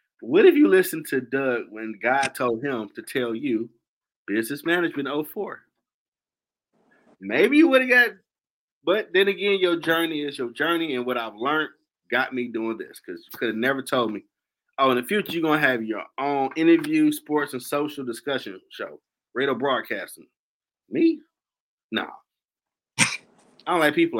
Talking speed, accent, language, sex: 170 wpm, American, English, male